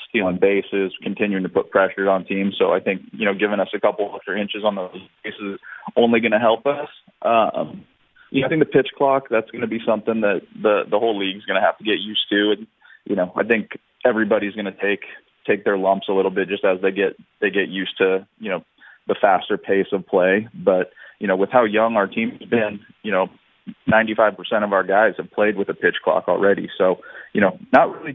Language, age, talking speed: English, 20-39, 240 wpm